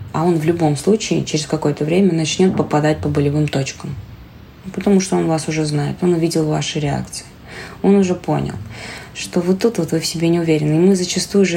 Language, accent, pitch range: Russian, native, 145-180 Hz